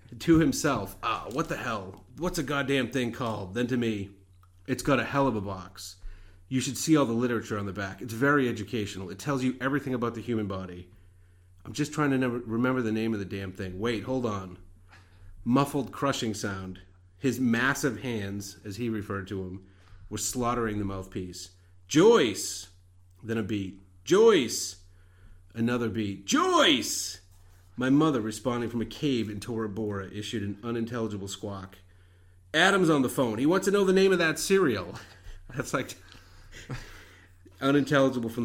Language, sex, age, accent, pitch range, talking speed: English, male, 30-49, American, 95-135 Hz, 170 wpm